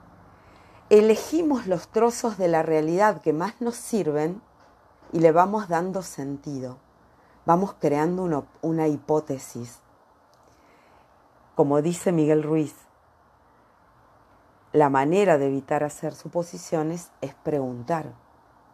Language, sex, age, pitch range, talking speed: Spanish, female, 40-59, 130-170 Hz, 100 wpm